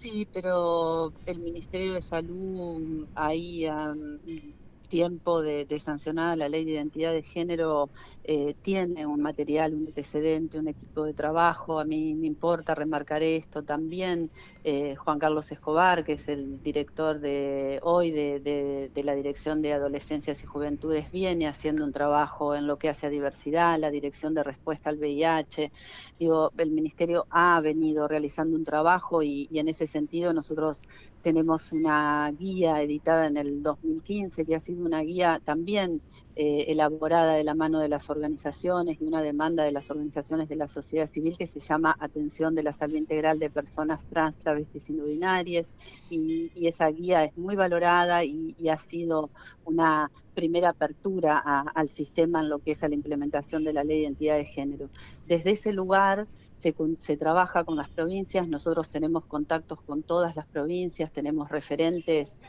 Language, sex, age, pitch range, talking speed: Spanish, female, 40-59, 150-165 Hz, 170 wpm